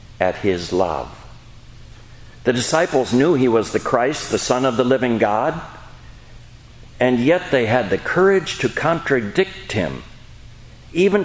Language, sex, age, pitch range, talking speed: English, male, 60-79, 110-135 Hz, 140 wpm